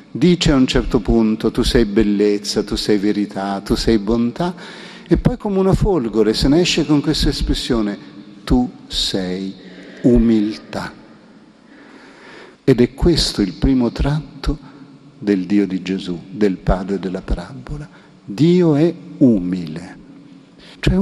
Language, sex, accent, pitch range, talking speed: Italian, male, native, 110-170 Hz, 130 wpm